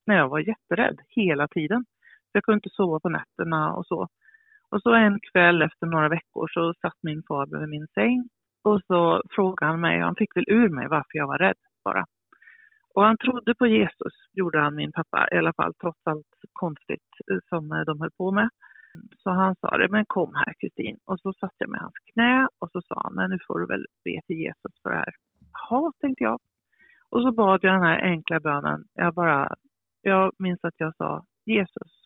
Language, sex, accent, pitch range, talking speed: Swedish, female, native, 165-230 Hz, 210 wpm